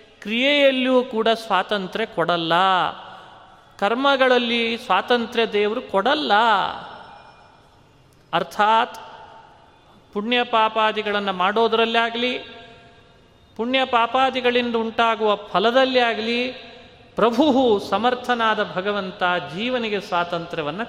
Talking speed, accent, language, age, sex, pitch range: 65 wpm, native, Kannada, 30-49, male, 185-240 Hz